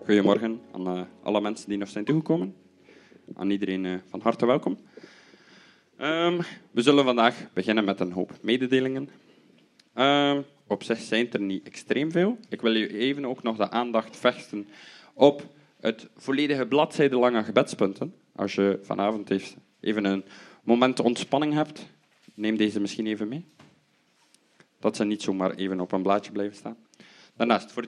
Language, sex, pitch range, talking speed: Dutch, male, 100-130 Hz, 145 wpm